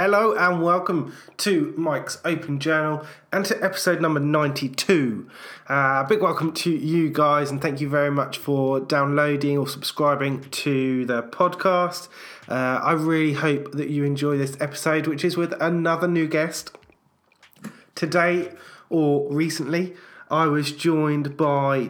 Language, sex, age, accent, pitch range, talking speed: English, male, 20-39, British, 140-165 Hz, 145 wpm